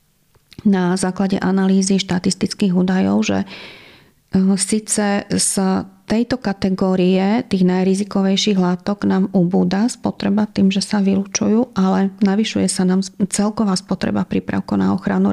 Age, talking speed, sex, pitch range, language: 30-49, 115 wpm, female, 185-210 Hz, Slovak